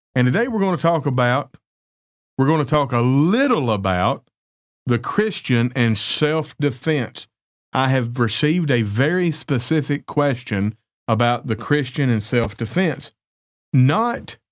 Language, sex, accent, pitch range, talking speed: English, male, American, 110-145 Hz, 130 wpm